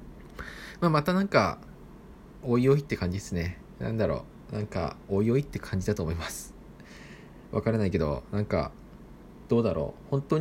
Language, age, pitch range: Japanese, 20-39, 95-120 Hz